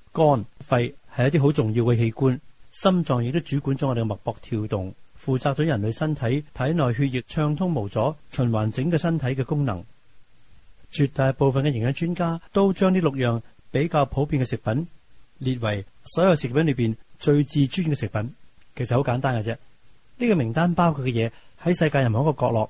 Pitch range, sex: 115-150 Hz, male